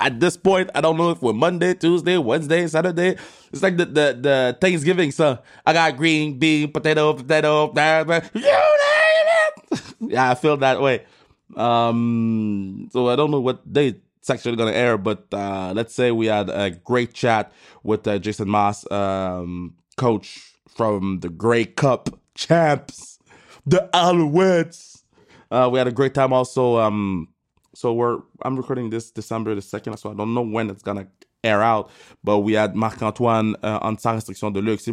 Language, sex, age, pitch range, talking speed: French, male, 20-39, 105-140 Hz, 180 wpm